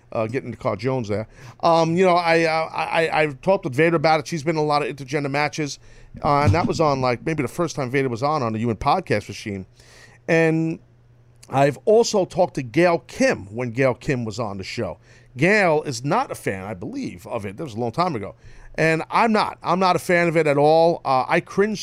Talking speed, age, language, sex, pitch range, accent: 240 wpm, 40-59, English, male, 120-165 Hz, American